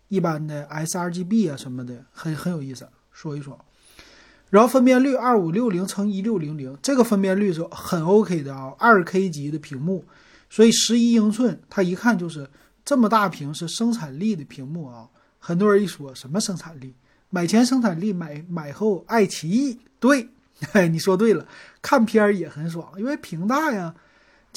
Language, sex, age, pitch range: Chinese, male, 30-49, 155-220 Hz